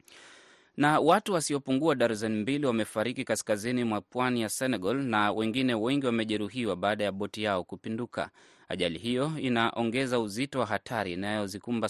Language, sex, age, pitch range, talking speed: Swahili, male, 20-39, 100-125 Hz, 135 wpm